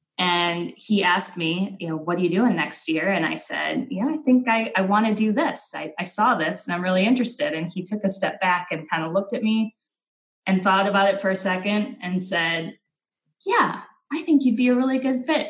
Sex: female